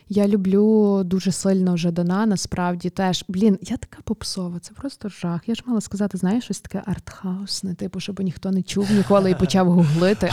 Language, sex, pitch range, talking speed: Ukrainian, female, 180-205 Hz, 185 wpm